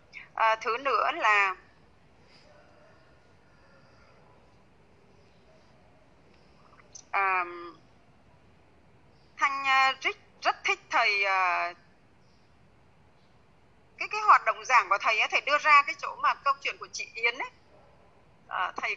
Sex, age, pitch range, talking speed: female, 20-39, 205-295 Hz, 100 wpm